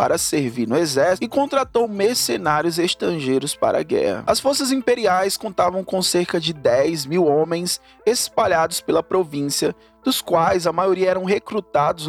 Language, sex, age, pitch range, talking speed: Portuguese, male, 20-39, 145-205 Hz, 150 wpm